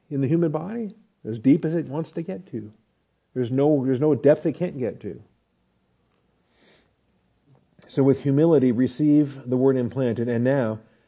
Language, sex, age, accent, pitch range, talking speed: English, male, 50-69, American, 125-155 Hz, 155 wpm